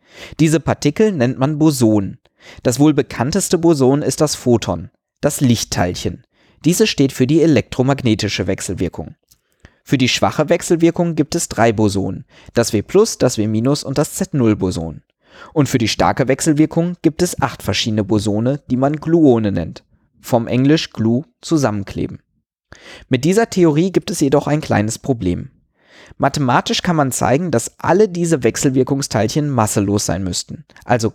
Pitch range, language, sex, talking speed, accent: 110-155 Hz, German, male, 145 wpm, German